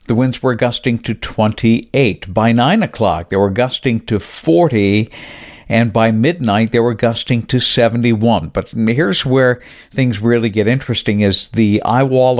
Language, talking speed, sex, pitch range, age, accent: English, 155 wpm, male, 105-125 Hz, 60-79, American